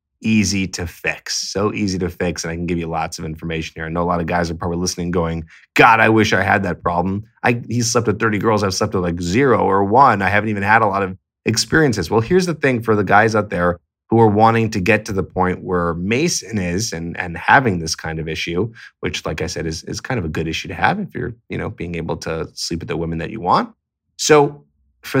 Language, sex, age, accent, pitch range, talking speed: English, male, 20-39, American, 85-105 Hz, 260 wpm